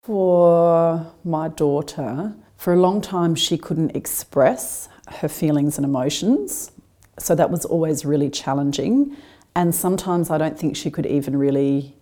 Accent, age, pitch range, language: Australian, 40-59, 150-185 Hz, English